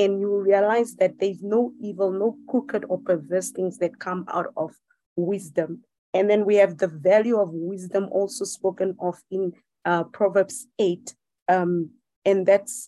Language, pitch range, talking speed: English, 185-225 Hz, 165 wpm